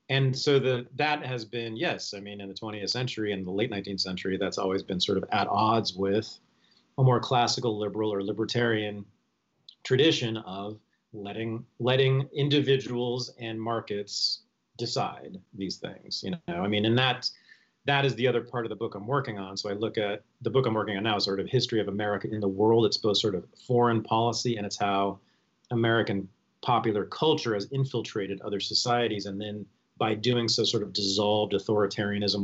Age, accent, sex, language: 40-59, American, male, English